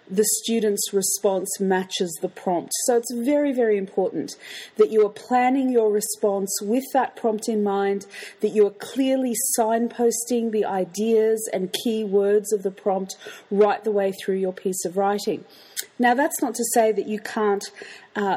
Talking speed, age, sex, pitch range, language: 170 wpm, 30-49, female, 195-230 Hz, English